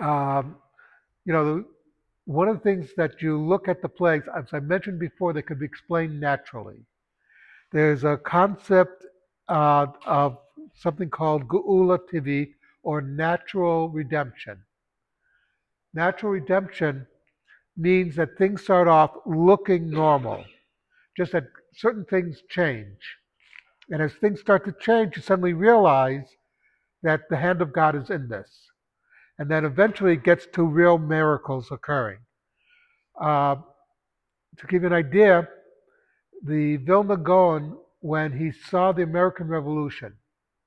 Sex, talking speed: male, 130 wpm